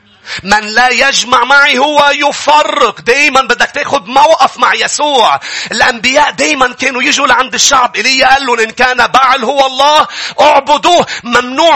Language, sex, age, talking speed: English, male, 40-59, 140 wpm